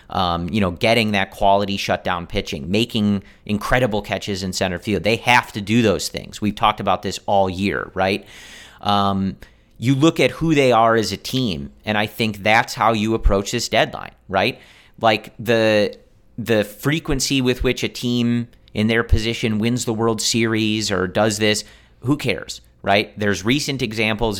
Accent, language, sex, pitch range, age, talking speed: American, English, male, 100-120 Hz, 40-59, 175 wpm